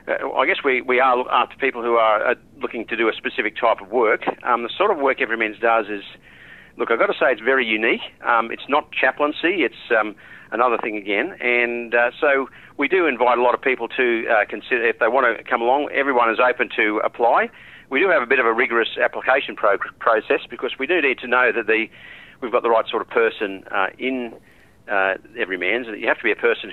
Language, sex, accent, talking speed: English, male, Australian, 240 wpm